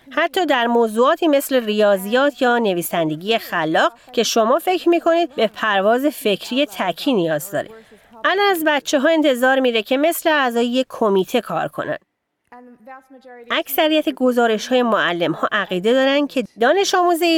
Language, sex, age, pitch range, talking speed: Persian, female, 30-49, 200-290 Hz, 140 wpm